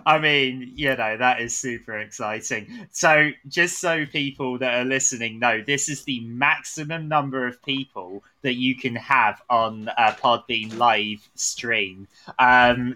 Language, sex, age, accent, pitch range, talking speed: English, male, 20-39, British, 115-140 Hz, 155 wpm